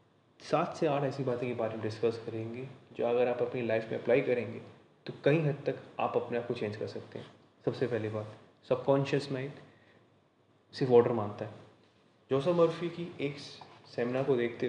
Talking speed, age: 185 wpm, 20-39